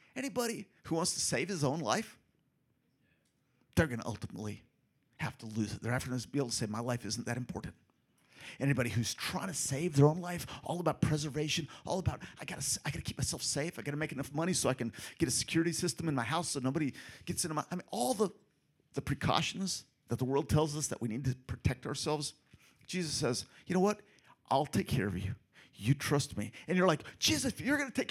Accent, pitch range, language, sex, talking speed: American, 120-165 Hz, English, male, 235 wpm